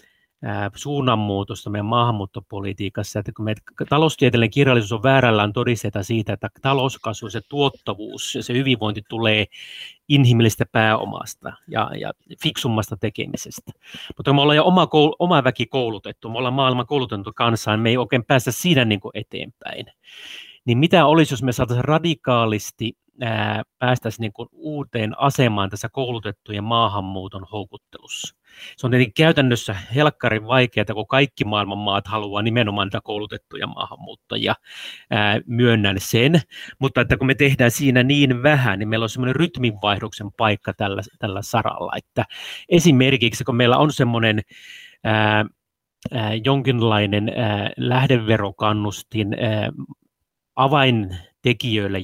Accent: native